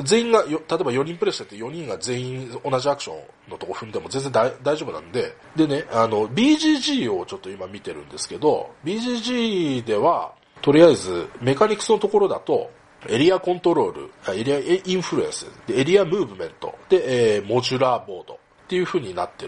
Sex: male